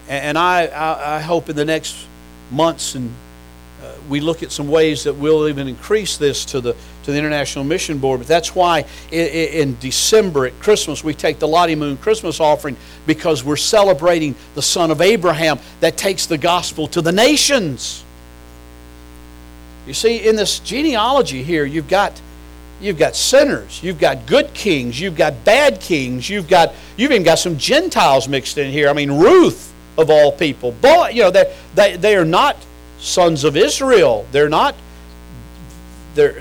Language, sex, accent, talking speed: English, male, American, 170 wpm